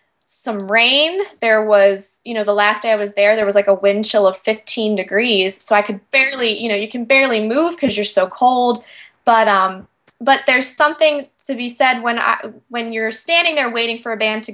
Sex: female